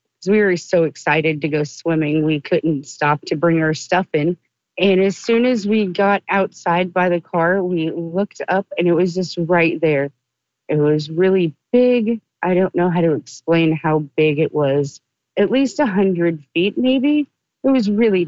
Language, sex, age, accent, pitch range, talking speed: English, female, 40-59, American, 160-200 Hz, 185 wpm